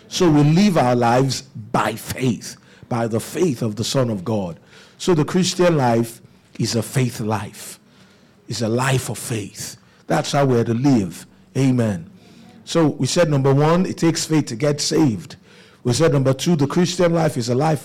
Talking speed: 190 wpm